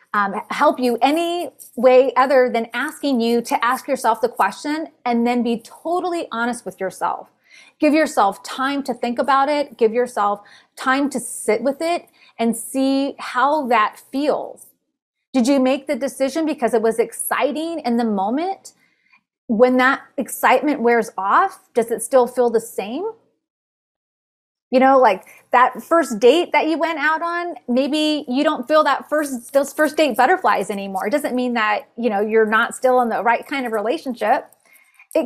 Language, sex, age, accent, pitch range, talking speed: English, female, 30-49, American, 235-300 Hz, 170 wpm